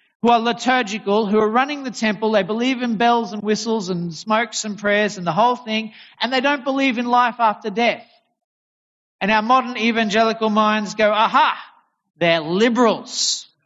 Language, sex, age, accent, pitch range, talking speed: English, male, 40-59, Australian, 175-220 Hz, 170 wpm